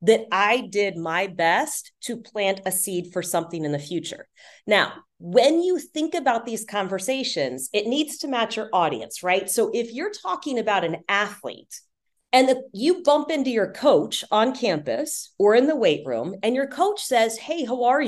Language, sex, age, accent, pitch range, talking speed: English, female, 40-59, American, 205-295 Hz, 185 wpm